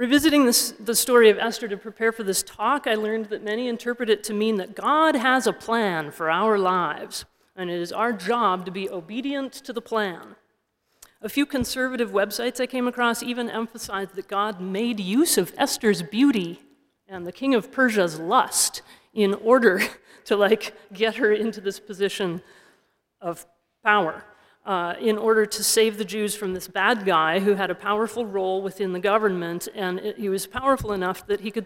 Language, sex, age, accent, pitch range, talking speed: English, female, 40-59, American, 195-235 Hz, 190 wpm